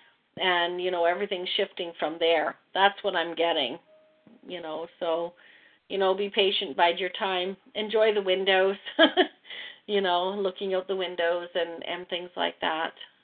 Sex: female